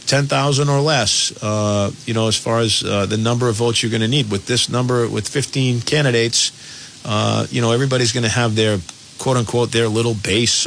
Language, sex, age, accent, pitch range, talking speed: English, male, 40-59, American, 105-125 Hz, 210 wpm